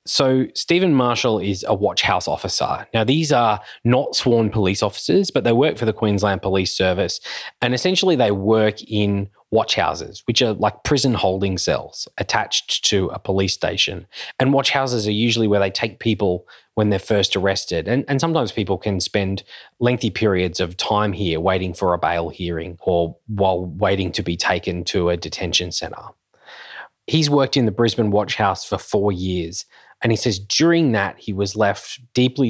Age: 20-39